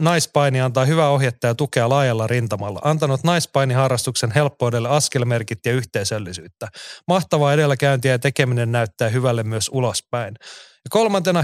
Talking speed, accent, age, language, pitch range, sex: 120 wpm, native, 30-49, Finnish, 120-150 Hz, male